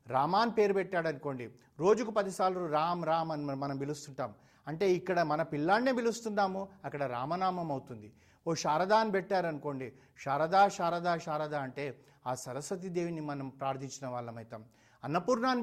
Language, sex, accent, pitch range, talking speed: Telugu, male, native, 135-180 Hz, 125 wpm